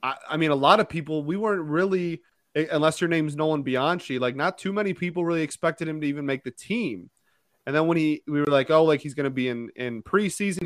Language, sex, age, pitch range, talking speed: English, male, 30-49, 130-165 Hz, 240 wpm